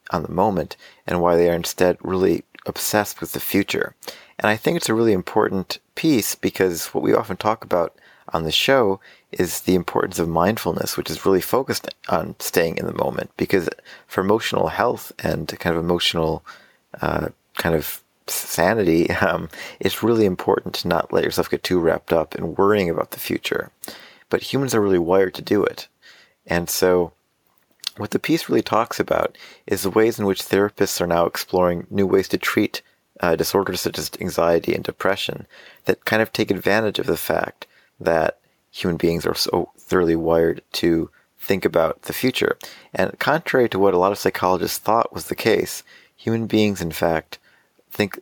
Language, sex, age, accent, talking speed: English, male, 40-59, American, 180 wpm